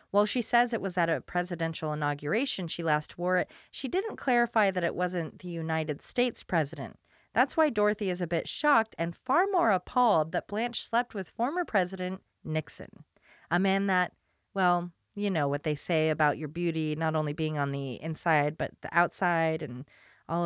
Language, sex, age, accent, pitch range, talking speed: English, female, 30-49, American, 160-215 Hz, 190 wpm